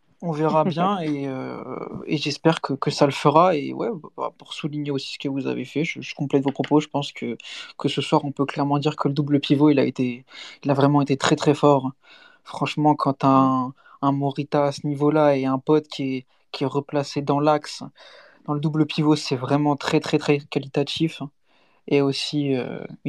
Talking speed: 215 wpm